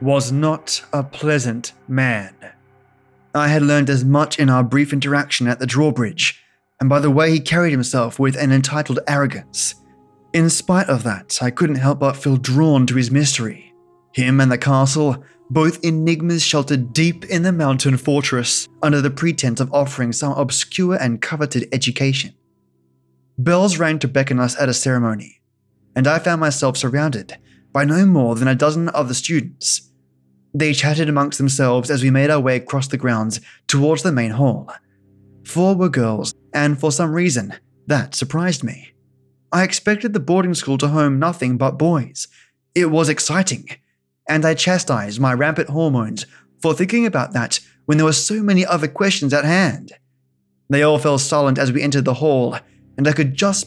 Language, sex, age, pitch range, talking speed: English, male, 20-39, 125-155 Hz, 175 wpm